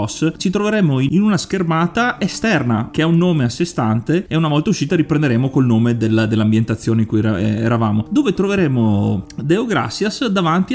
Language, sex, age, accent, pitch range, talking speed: Italian, male, 30-49, native, 115-175 Hz, 160 wpm